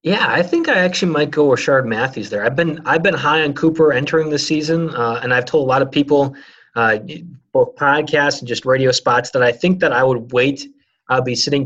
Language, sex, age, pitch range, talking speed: English, male, 30-49, 135-185 Hz, 235 wpm